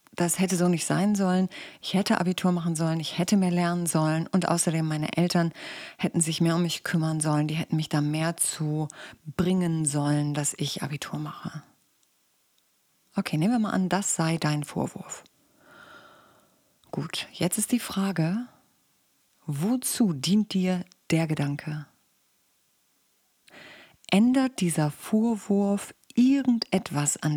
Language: German